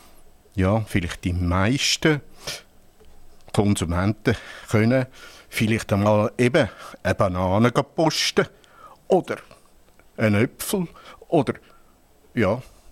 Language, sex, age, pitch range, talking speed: German, male, 60-79, 95-130 Hz, 80 wpm